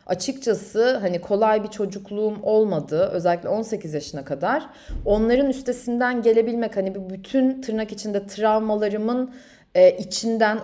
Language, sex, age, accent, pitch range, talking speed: Turkish, female, 30-49, native, 195-250 Hz, 120 wpm